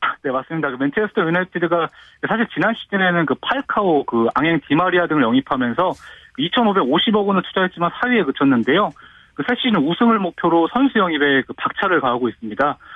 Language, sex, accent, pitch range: Korean, male, native, 150-230 Hz